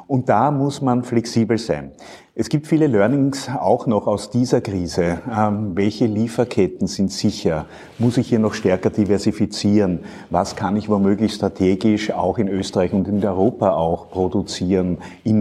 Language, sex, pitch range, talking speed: German, male, 95-115 Hz, 155 wpm